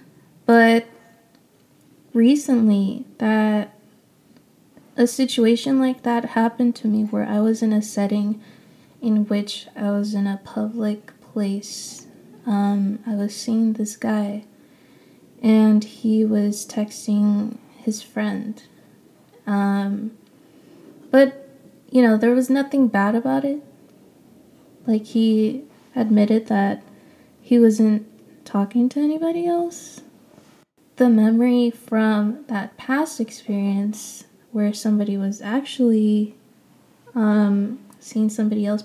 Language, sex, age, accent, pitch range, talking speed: English, female, 20-39, American, 210-245 Hz, 110 wpm